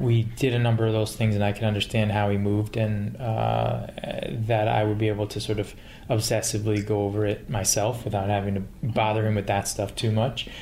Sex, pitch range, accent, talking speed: male, 105-120 Hz, American, 220 wpm